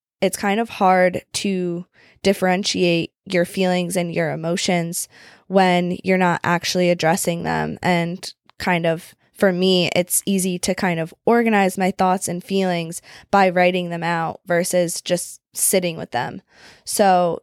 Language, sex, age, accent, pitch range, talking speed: English, female, 20-39, American, 170-195 Hz, 145 wpm